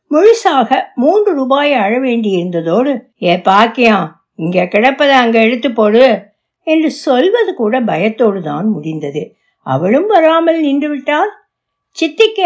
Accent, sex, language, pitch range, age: native, female, Tamil, 205-300 Hz, 60-79